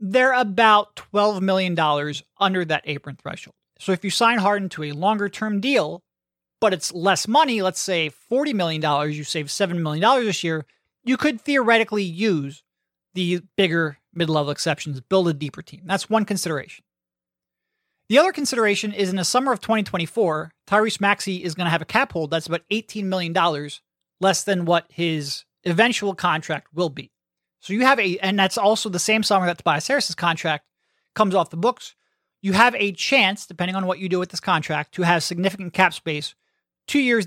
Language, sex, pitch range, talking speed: English, male, 160-210 Hz, 185 wpm